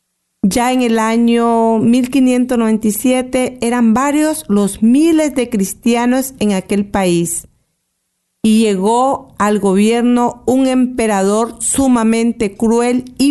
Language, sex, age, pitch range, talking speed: Spanish, female, 40-59, 210-260 Hz, 105 wpm